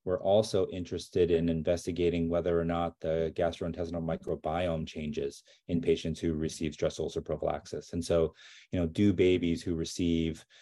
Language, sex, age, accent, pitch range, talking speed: English, male, 30-49, American, 80-90 Hz, 155 wpm